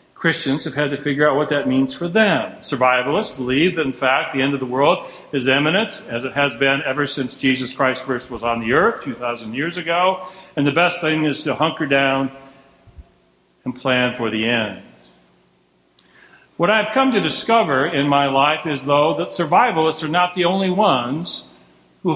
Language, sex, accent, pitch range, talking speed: English, male, American, 130-165 Hz, 190 wpm